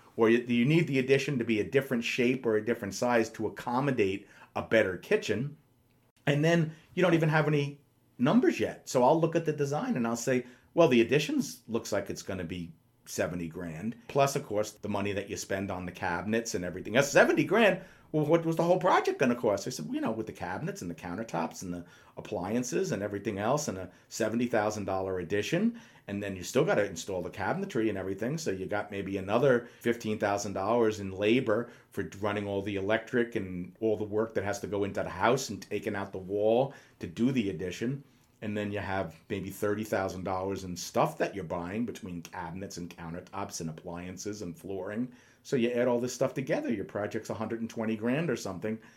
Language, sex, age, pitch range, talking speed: English, male, 40-59, 100-130 Hz, 205 wpm